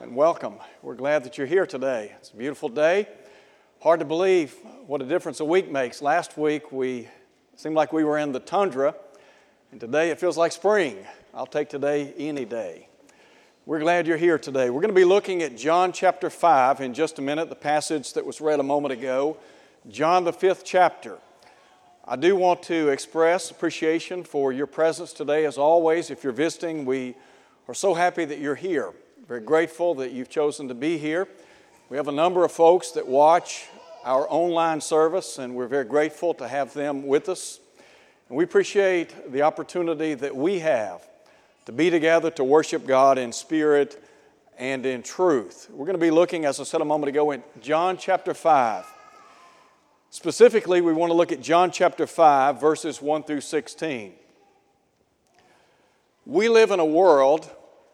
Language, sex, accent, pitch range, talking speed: English, male, American, 145-180 Hz, 180 wpm